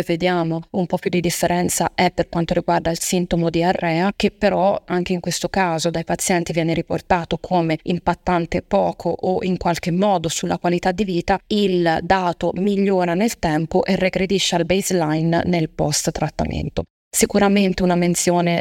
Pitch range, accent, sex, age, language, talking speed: 170-185 Hz, native, female, 20-39, Italian, 160 wpm